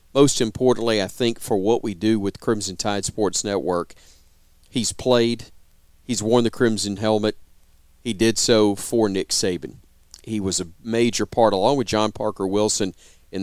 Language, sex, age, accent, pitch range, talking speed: English, male, 40-59, American, 95-115 Hz, 165 wpm